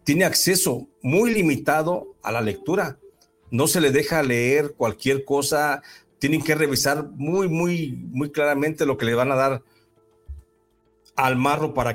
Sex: male